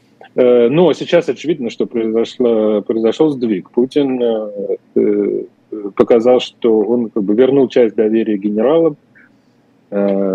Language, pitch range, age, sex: Russian, 110-125 Hz, 30-49, male